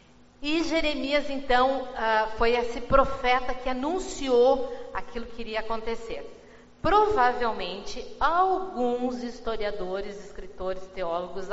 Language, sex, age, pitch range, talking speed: Portuguese, female, 40-59, 205-255 Hz, 90 wpm